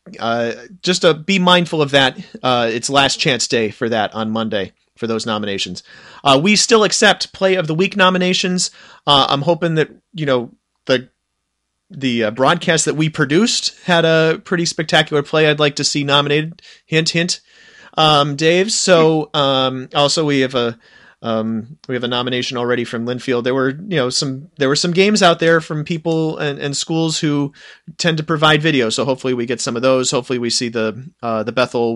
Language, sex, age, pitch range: English, male, 30-49, 125-165 Hz